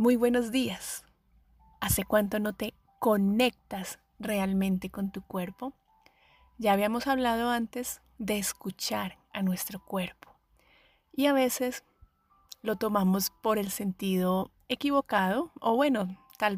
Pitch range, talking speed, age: 185-235 Hz, 120 wpm, 30-49